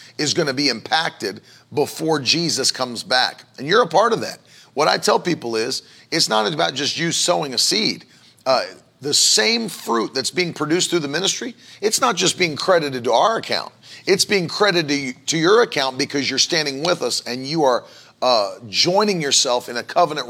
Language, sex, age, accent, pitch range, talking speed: English, male, 40-59, American, 125-155 Hz, 200 wpm